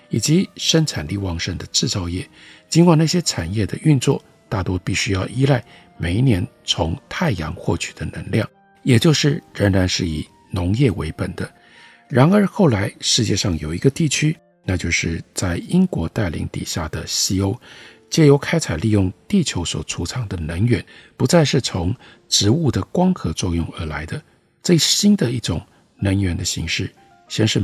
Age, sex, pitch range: 50-69, male, 95-150 Hz